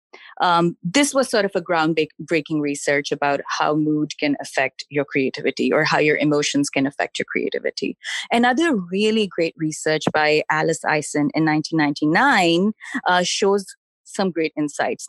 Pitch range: 160-210 Hz